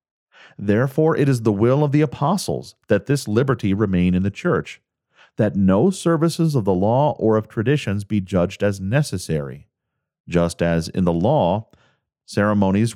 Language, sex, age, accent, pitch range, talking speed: English, male, 40-59, American, 85-120 Hz, 155 wpm